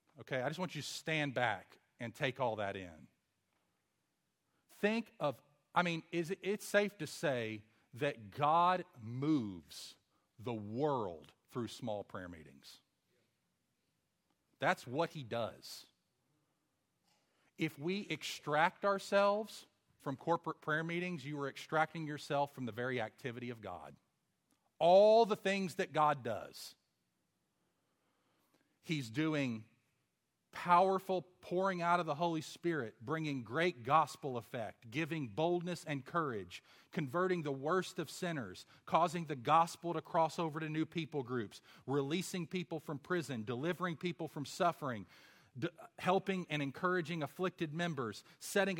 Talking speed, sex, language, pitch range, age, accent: 130 wpm, male, English, 130-180 Hz, 40-59, American